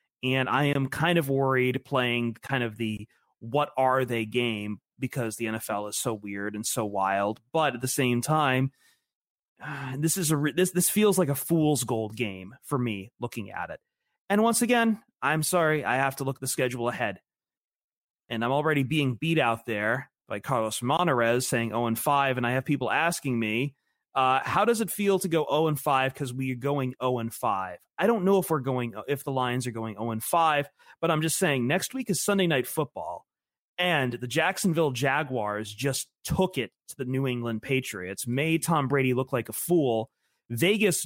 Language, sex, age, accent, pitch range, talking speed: English, male, 30-49, American, 120-155 Hz, 195 wpm